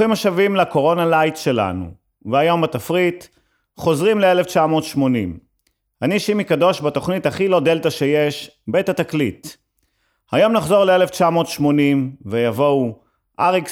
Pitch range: 130-170 Hz